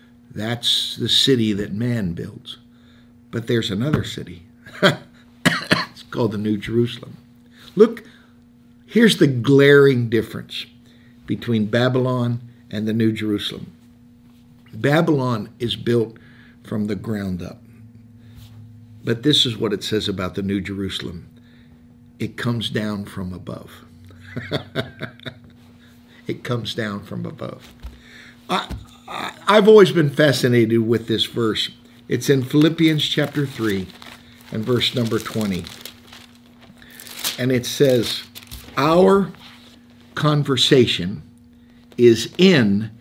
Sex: male